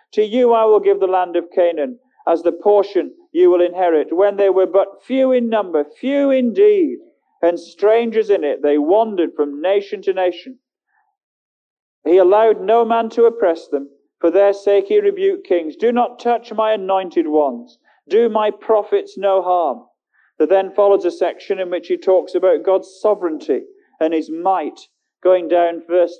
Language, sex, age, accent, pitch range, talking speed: English, male, 40-59, British, 180-255 Hz, 175 wpm